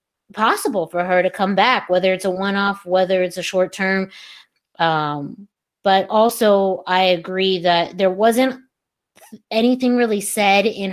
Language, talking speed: English, 150 wpm